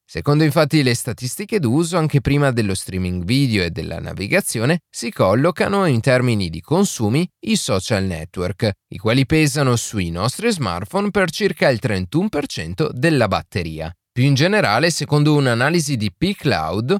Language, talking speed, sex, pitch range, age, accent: Italian, 145 wpm, male, 105-160 Hz, 30-49, native